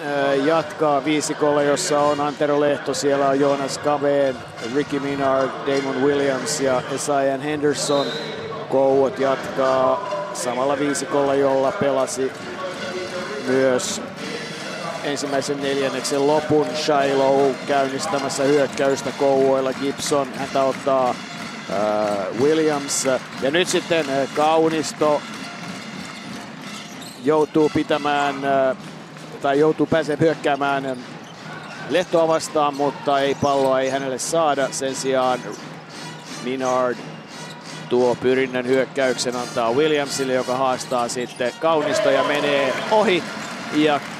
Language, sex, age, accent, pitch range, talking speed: Finnish, male, 50-69, native, 130-150 Hz, 95 wpm